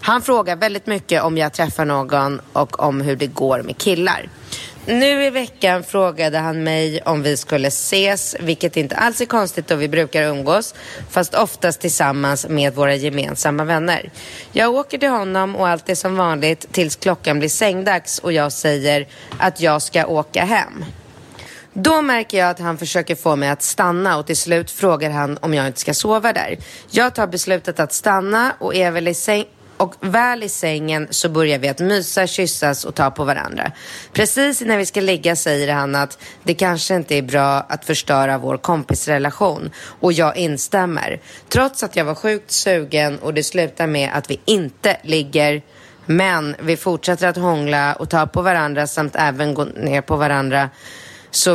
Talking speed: 185 wpm